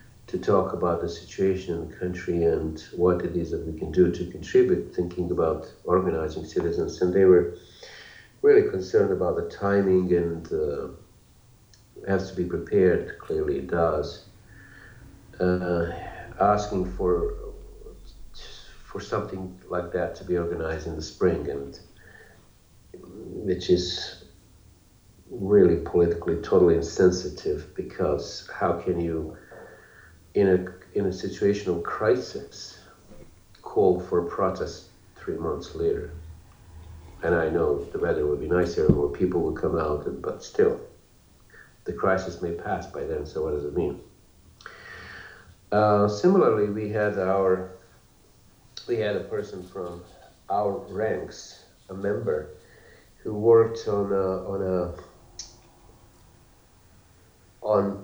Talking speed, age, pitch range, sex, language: 125 wpm, 50-69, 90-120 Hz, male, English